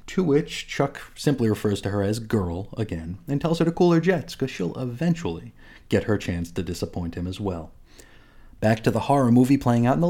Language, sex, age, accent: English, male, 30-49, American